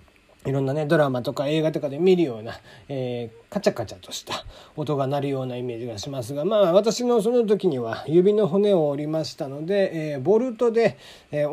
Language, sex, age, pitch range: Japanese, male, 40-59, 130-195 Hz